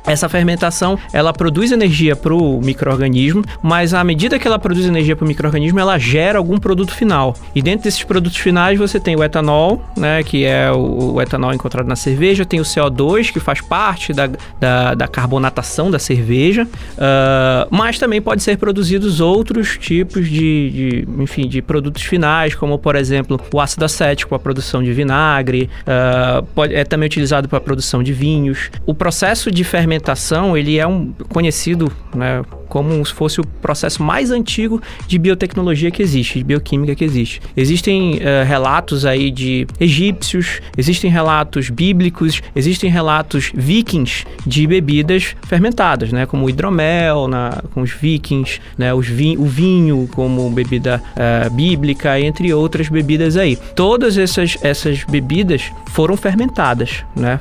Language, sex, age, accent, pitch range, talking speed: Portuguese, male, 20-39, Brazilian, 135-180 Hz, 155 wpm